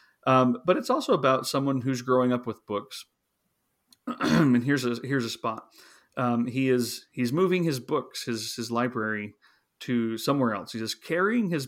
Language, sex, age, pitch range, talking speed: English, male, 30-49, 115-140 Hz, 175 wpm